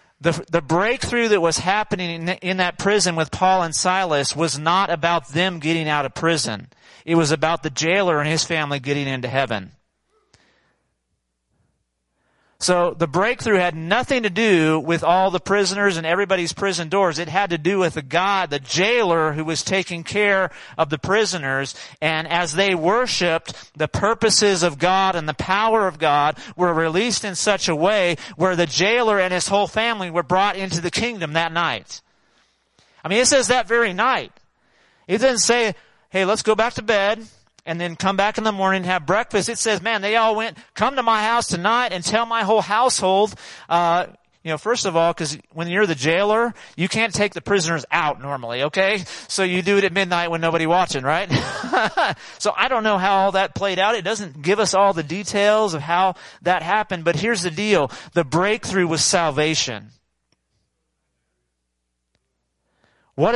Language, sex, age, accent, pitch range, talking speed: English, male, 40-59, American, 160-205 Hz, 185 wpm